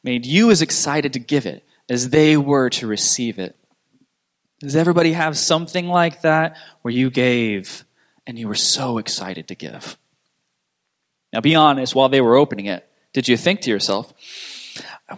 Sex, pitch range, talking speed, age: male, 130-195 Hz, 170 wpm, 20-39